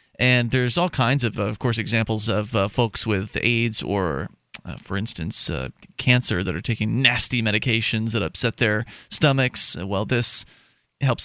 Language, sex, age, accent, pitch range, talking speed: English, male, 30-49, American, 115-140 Hz, 165 wpm